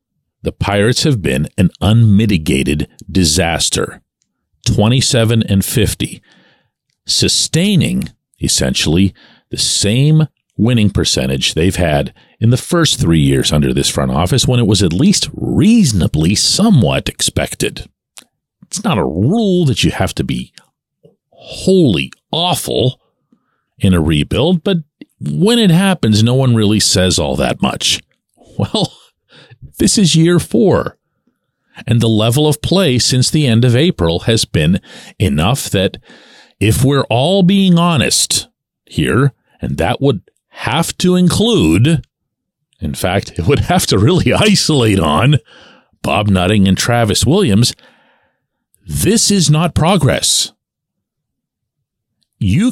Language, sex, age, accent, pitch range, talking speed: English, male, 50-69, American, 100-165 Hz, 125 wpm